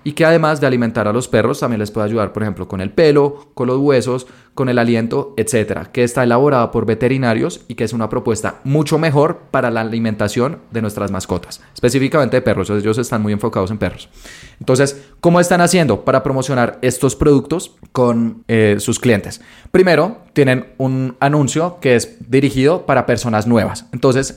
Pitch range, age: 110-145 Hz, 20-39